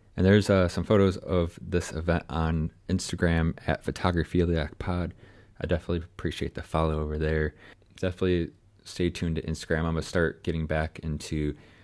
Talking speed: 155 wpm